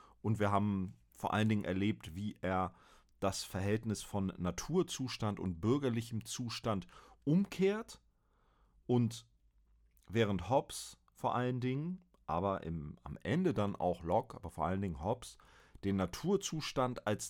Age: 40-59